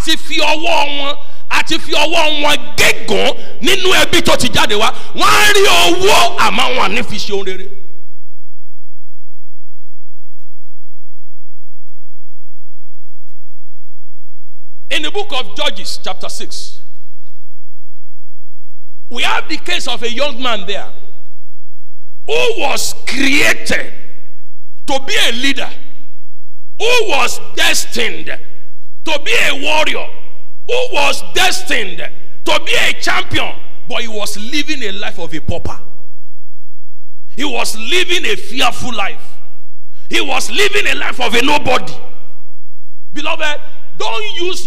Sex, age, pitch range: male, 50-69, 255-355 Hz